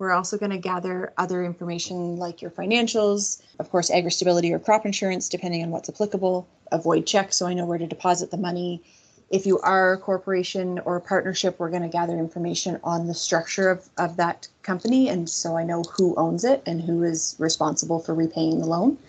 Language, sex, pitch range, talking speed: English, female, 170-195 Hz, 205 wpm